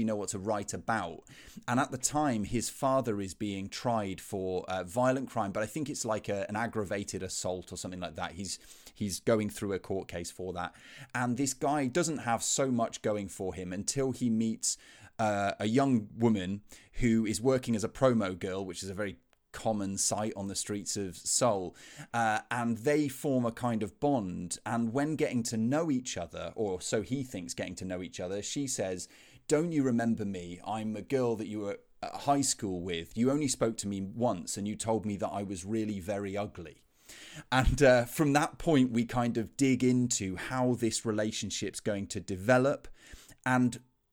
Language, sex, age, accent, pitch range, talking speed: English, male, 30-49, British, 100-125 Hz, 200 wpm